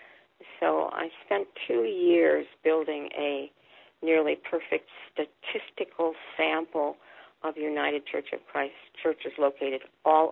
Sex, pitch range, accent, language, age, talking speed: female, 145-185 Hz, American, English, 50-69, 110 wpm